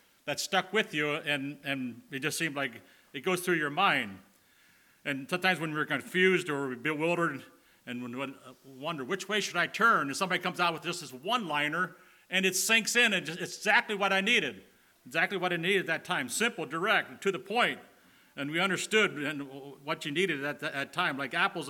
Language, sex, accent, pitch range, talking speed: English, male, American, 130-180 Hz, 210 wpm